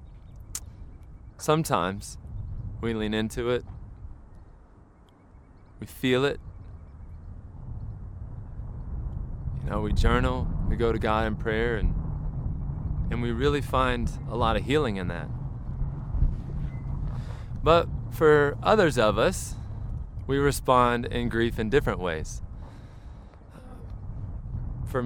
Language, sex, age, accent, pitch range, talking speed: English, male, 20-39, American, 95-125 Hz, 100 wpm